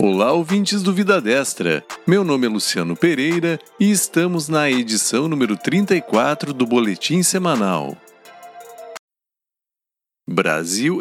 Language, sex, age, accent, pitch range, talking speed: Portuguese, male, 50-69, Brazilian, 120-185 Hz, 110 wpm